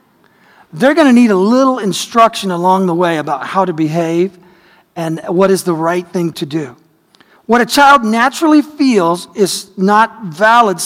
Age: 40-59